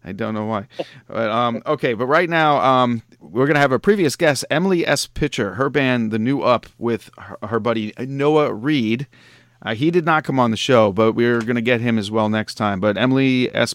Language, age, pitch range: English, 40-59, 110-140 Hz